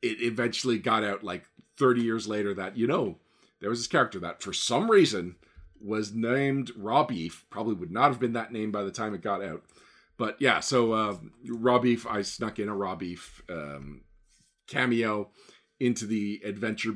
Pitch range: 105-130 Hz